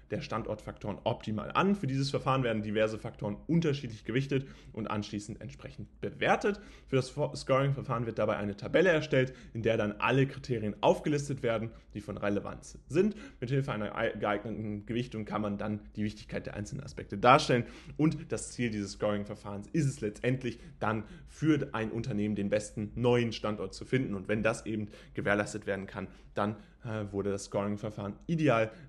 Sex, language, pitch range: male, German, 105-135 Hz